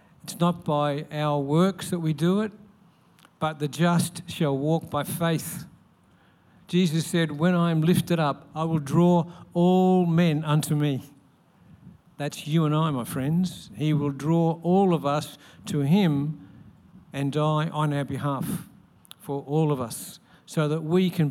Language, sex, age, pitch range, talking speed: English, male, 60-79, 145-175 Hz, 160 wpm